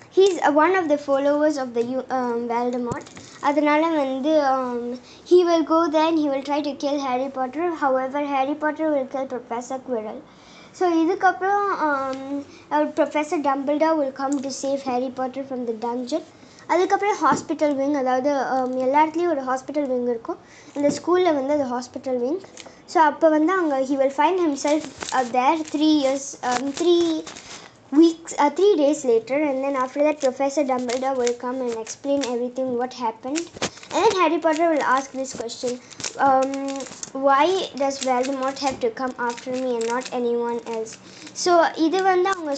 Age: 20-39